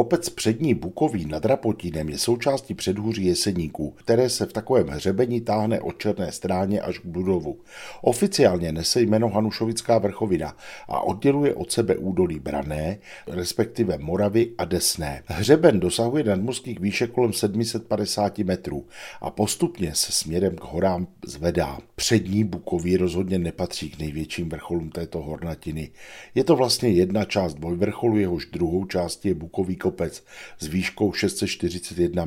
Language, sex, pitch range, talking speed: Czech, male, 85-115 Hz, 135 wpm